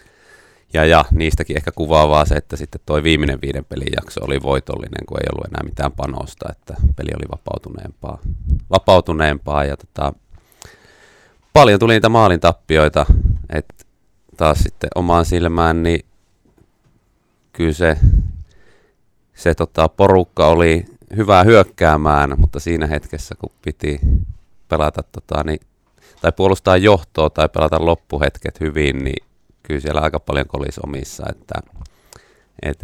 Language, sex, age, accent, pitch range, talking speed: Finnish, male, 30-49, native, 75-90 Hz, 130 wpm